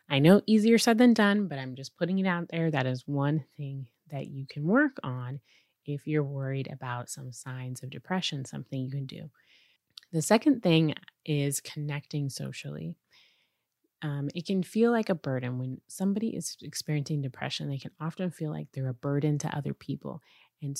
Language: English